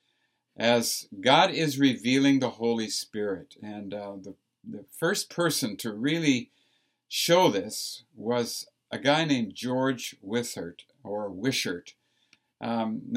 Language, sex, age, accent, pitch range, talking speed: English, male, 60-79, American, 125-160 Hz, 120 wpm